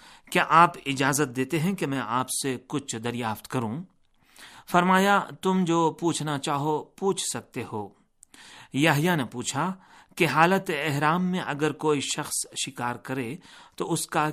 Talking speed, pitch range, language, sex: 145 wpm, 125-170 Hz, Urdu, male